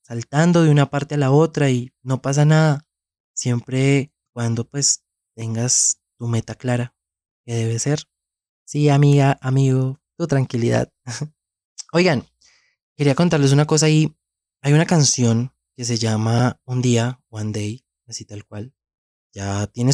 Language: Spanish